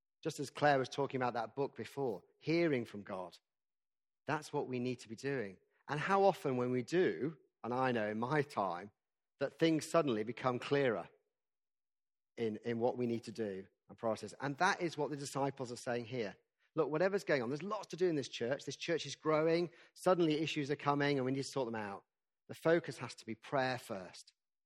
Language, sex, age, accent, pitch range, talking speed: English, male, 40-59, British, 120-150 Hz, 210 wpm